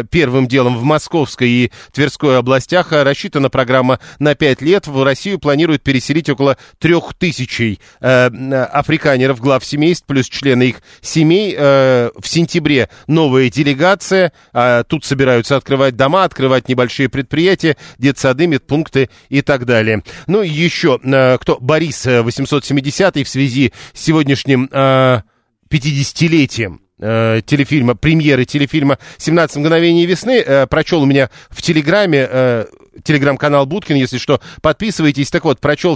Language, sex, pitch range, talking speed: Russian, male, 130-160 Hz, 130 wpm